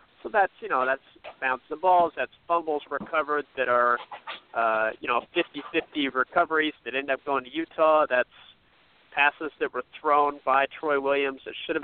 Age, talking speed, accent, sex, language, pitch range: 40-59, 170 wpm, American, male, English, 125-150 Hz